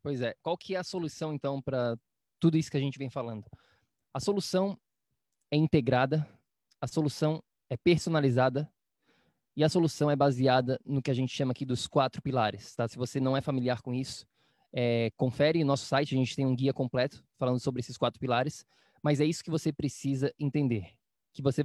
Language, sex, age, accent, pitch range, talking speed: Portuguese, male, 20-39, Brazilian, 130-155 Hz, 195 wpm